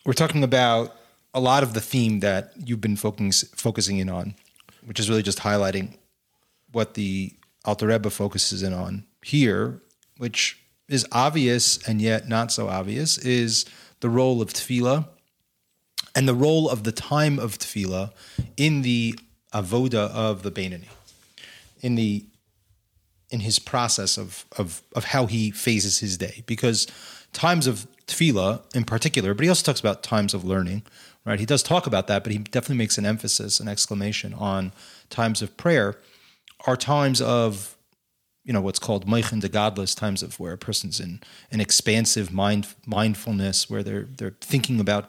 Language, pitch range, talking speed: English, 100-120 Hz, 165 wpm